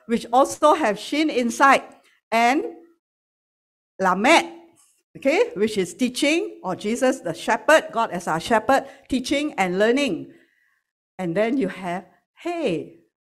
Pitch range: 200-275 Hz